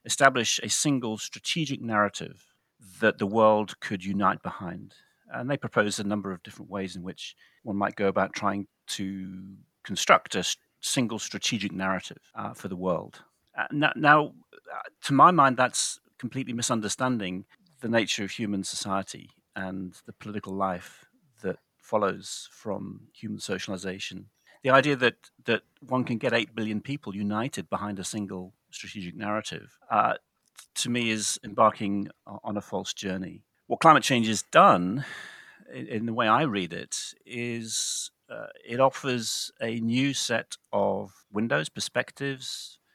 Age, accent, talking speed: 40-59, British, 150 wpm